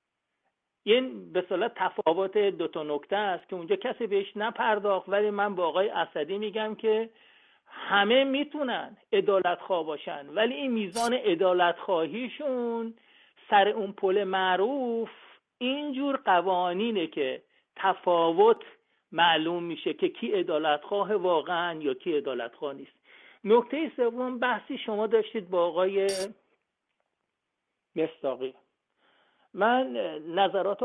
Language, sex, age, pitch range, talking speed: Persian, male, 50-69, 170-230 Hz, 105 wpm